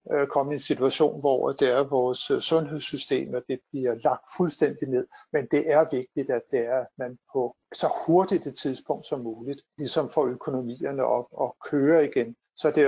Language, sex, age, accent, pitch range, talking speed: Danish, male, 60-79, native, 130-160 Hz, 190 wpm